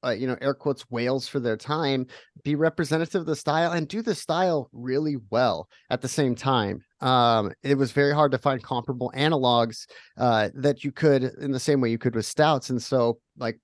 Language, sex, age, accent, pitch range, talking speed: English, male, 30-49, American, 130-165 Hz, 210 wpm